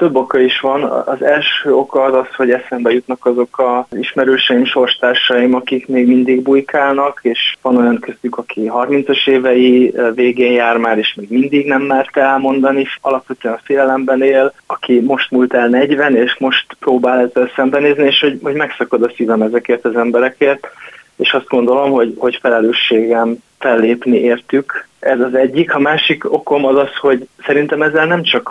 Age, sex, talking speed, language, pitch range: 20-39, male, 170 wpm, Hungarian, 120-135 Hz